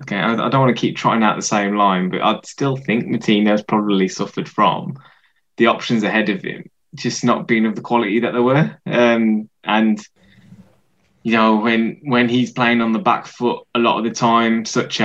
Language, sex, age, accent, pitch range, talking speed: English, male, 10-29, British, 105-125 Hz, 205 wpm